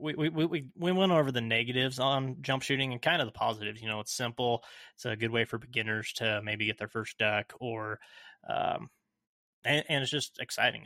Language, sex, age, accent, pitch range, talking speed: English, male, 20-39, American, 110-130 Hz, 215 wpm